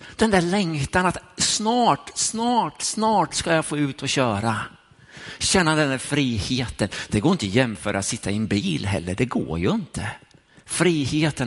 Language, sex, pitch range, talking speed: Swedish, male, 105-145 Hz, 175 wpm